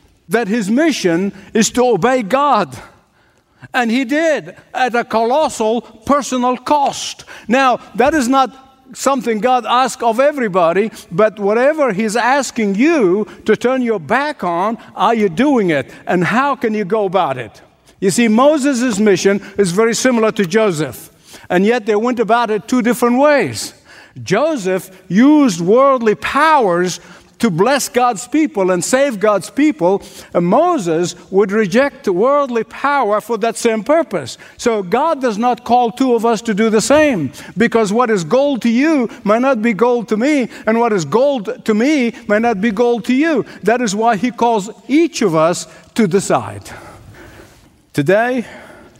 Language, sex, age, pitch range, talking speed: English, male, 60-79, 200-255 Hz, 160 wpm